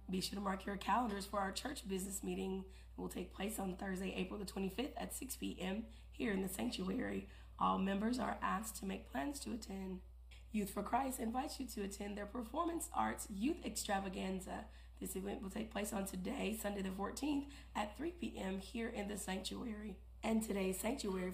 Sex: female